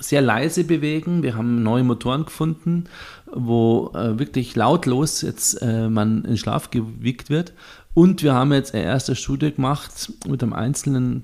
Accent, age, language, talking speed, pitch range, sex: German, 40-59, German, 160 wpm, 105-125 Hz, male